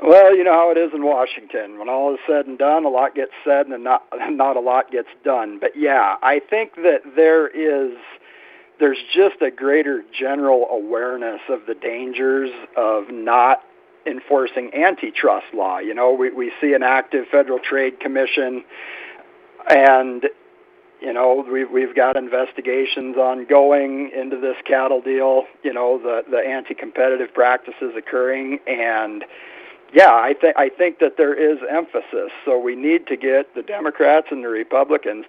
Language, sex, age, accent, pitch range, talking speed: English, male, 50-69, American, 130-170 Hz, 160 wpm